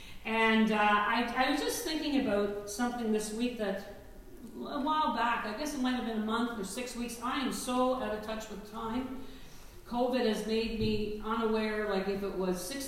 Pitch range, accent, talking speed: 220-275 Hz, American, 200 wpm